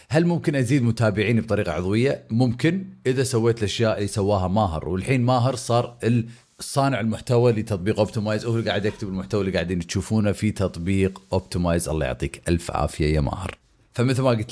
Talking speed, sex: 165 wpm, male